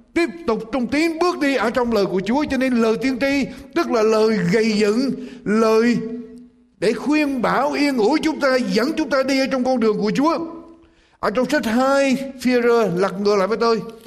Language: Vietnamese